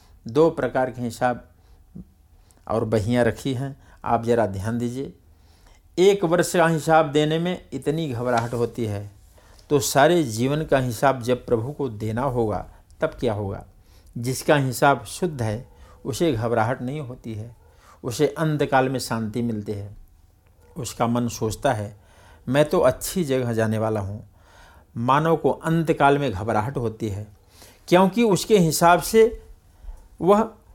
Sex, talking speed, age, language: male, 140 wpm, 60-79, Hindi